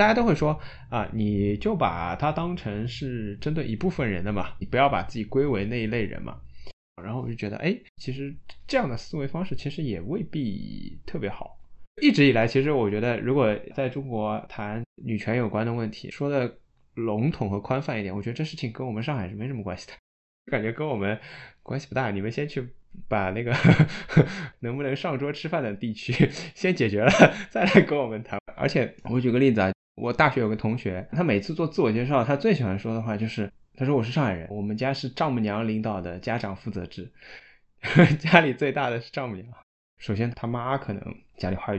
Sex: male